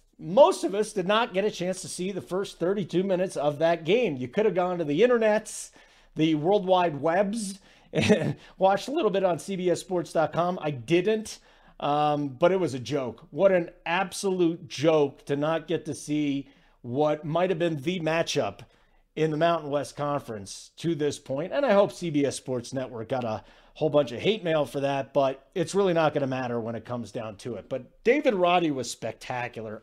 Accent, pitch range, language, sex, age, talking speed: American, 145-195 Hz, English, male, 40-59, 200 wpm